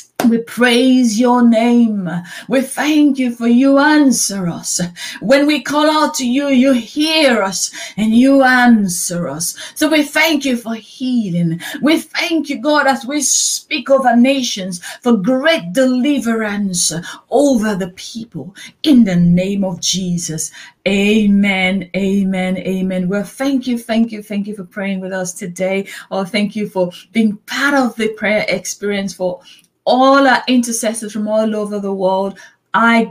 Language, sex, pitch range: English, female, 190-245 Hz